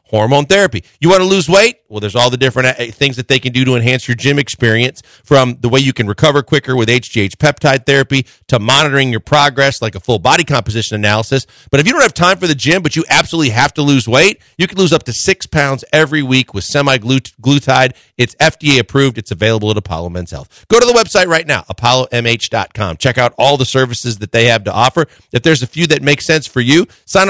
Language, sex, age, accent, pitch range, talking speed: English, male, 40-59, American, 120-155 Hz, 235 wpm